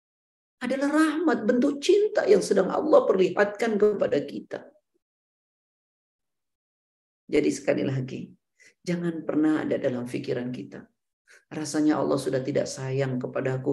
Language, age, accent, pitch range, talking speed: Indonesian, 50-69, native, 155-235 Hz, 110 wpm